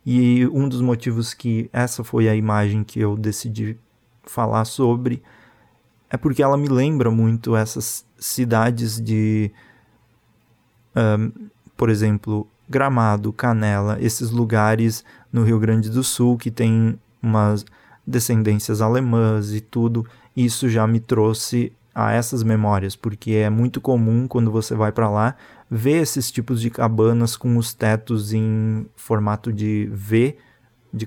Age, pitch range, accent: 20-39, 110-120 Hz, Brazilian